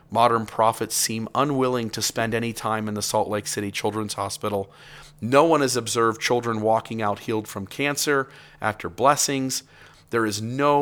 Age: 40-59